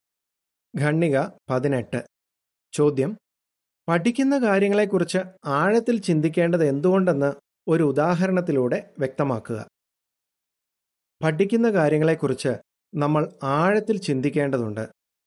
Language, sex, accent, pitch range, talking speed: Malayalam, male, native, 140-195 Hz, 65 wpm